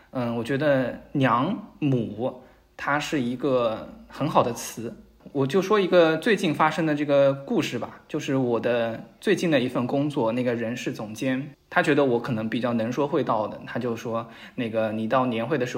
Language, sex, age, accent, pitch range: Chinese, male, 20-39, native, 120-160 Hz